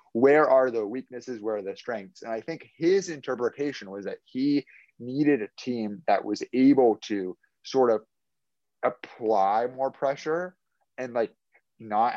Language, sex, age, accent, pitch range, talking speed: English, male, 30-49, American, 110-145 Hz, 155 wpm